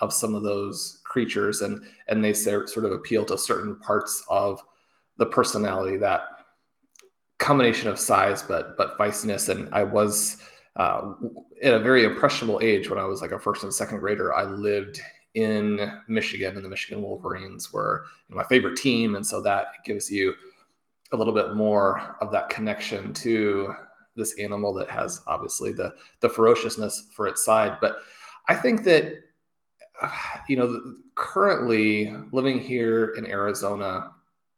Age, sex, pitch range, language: 20-39, male, 105-150 Hz, English